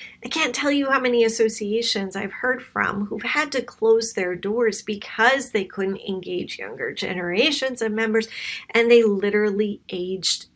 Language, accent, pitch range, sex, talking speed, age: English, American, 205-270 Hz, female, 160 wpm, 40-59